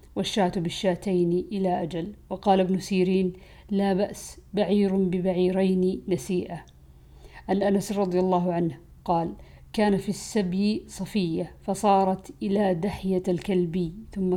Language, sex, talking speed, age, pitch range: Arabic, female, 115 wpm, 50-69, 165-195 Hz